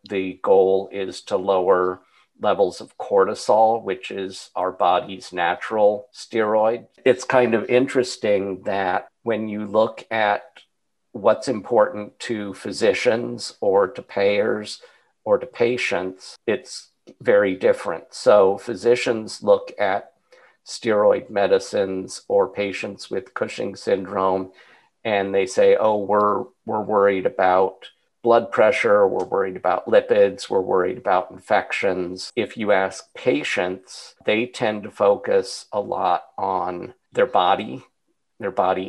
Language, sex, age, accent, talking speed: English, male, 50-69, American, 125 wpm